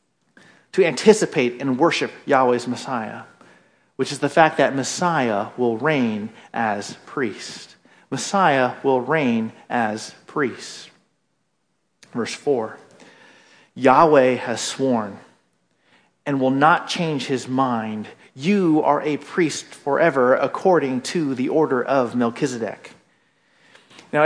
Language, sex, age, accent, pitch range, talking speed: English, male, 40-59, American, 140-195 Hz, 110 wpm